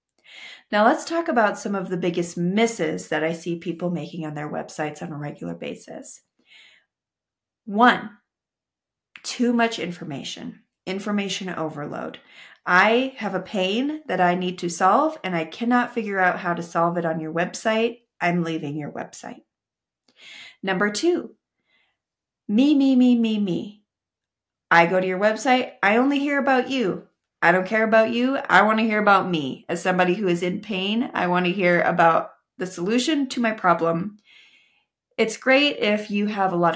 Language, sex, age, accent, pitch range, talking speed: English, female, 30-49, American, 175-235 Hz, 170 wpm